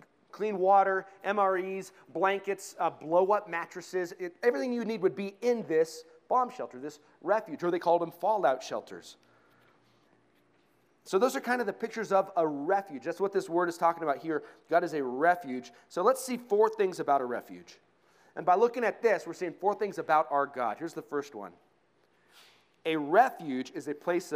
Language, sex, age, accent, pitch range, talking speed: English, male, 30-49, American, 155-205 Hz, 185 wpm